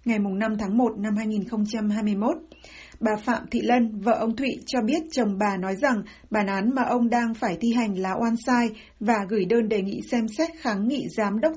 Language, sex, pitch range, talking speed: Vietnamese, female, 210-250 Hz, 215 wpm